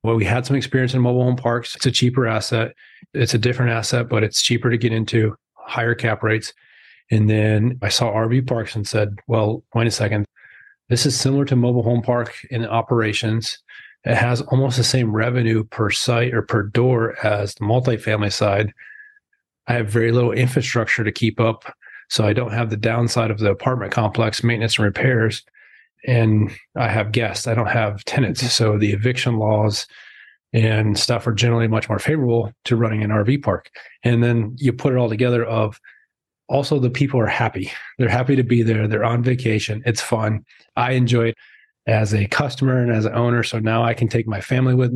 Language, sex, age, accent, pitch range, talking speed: English, male, 30-49, American, 110-125 Hz, 200 wpm